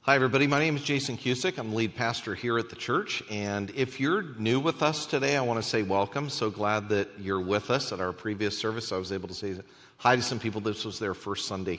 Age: 40-59